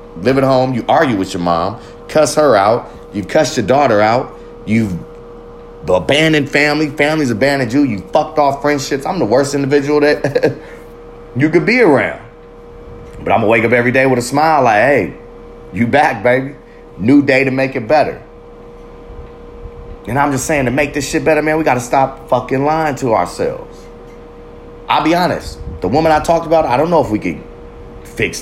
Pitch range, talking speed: 115-150 Hz, 190 wpm